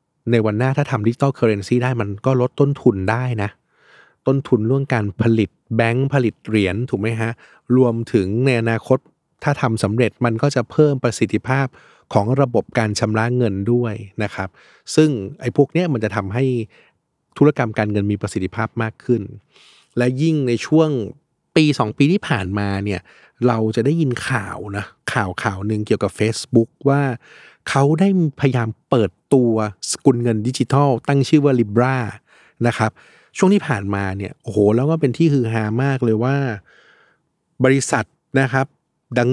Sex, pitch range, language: male, 110-135 Hz, Thai